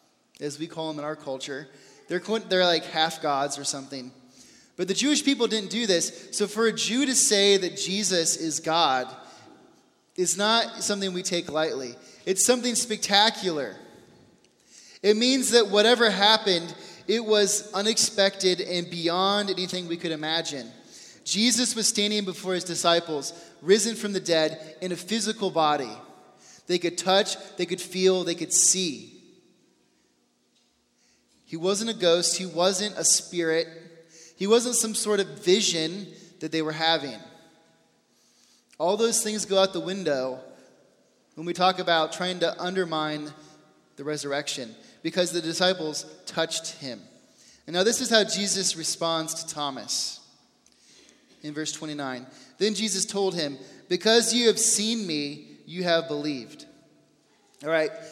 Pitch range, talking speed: 160-205 Hz, 145 wpm